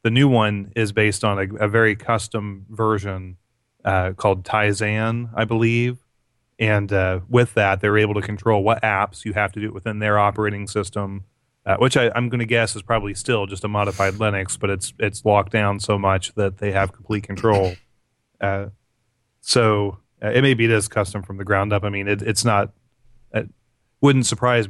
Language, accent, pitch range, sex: English, American, 100-115 Hz, male